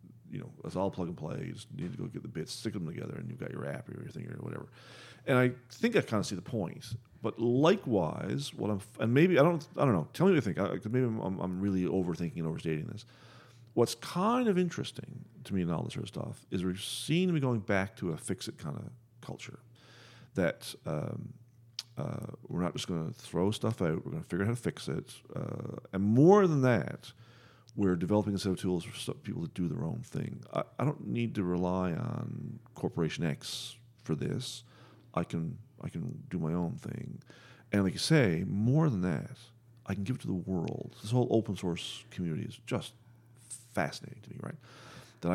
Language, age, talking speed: English, 40-59, 230 wpm